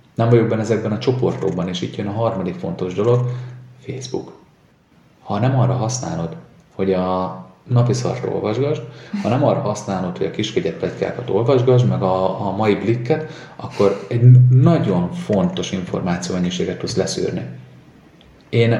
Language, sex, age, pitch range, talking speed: Hungarian, male, 30-49, 90-125 Hz, 135 wpm